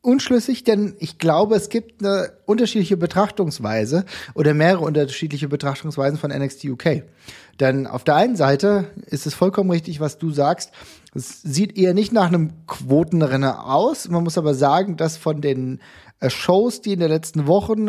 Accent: German